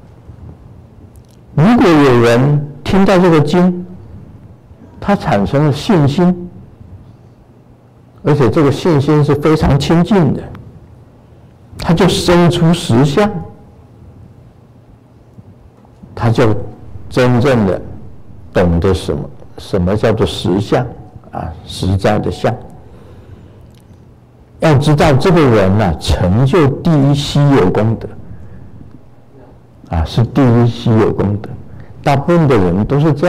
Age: 60-79